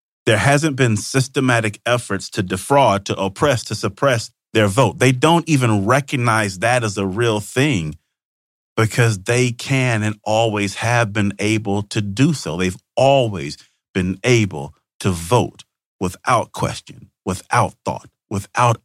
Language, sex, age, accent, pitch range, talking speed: English, male, 40-59, American, 90-120 Hz, 140 wpm